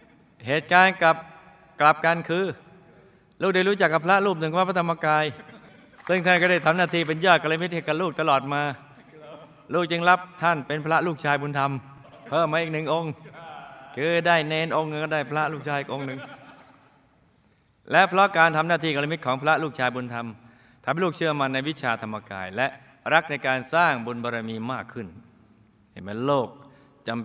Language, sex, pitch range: Thai, male, 105-155 Hz